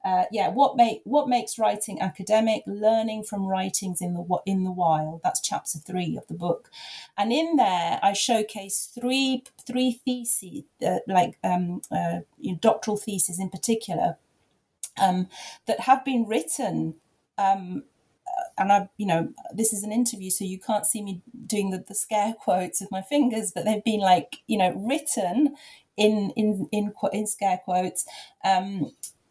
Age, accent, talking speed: 30-49, British, 170 wpm